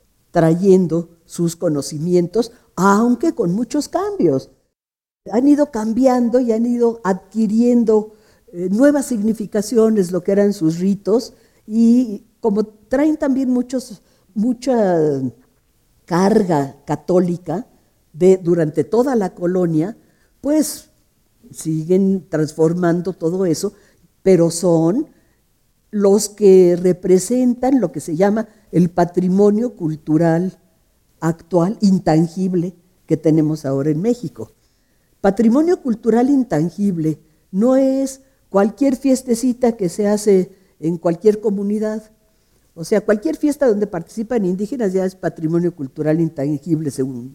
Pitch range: 165-230 Hz